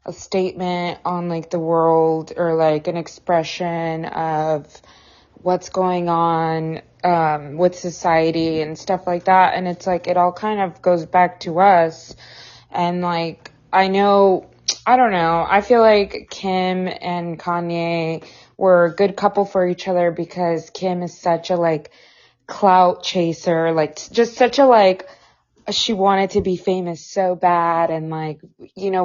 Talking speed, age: 155 wpm, 20-39